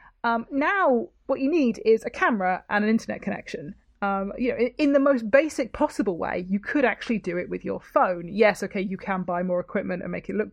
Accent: British